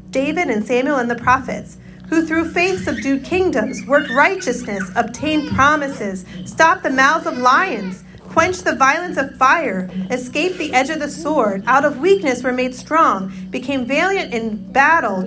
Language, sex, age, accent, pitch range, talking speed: English, female, 40-59, American, 215-290 Hz, 160 wpm